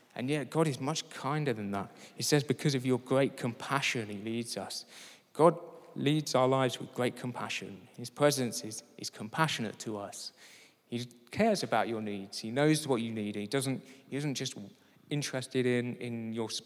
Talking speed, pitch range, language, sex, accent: 185 wpm, 115-140 Hz, English, male, British